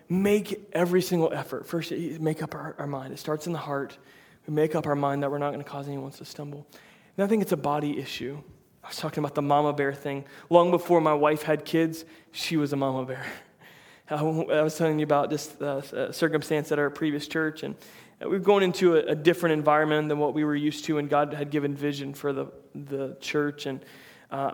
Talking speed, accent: 230 wpm, American